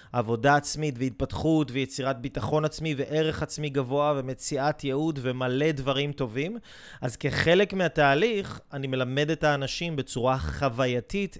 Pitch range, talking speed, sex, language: 130-155 Hz, 120 wpm, male, Hebrew